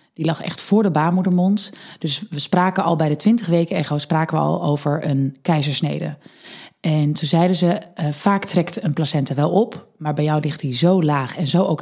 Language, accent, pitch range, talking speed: Dutch, Dutch, 155-205 Hz, 190 wpm